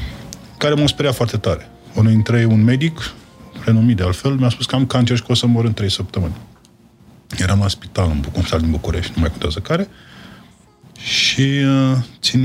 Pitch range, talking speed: 100-135 Hz, 180 wpm